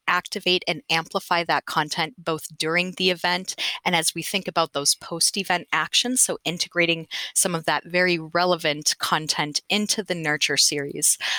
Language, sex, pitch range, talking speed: English, female, 160-200 Hz, 155 wpm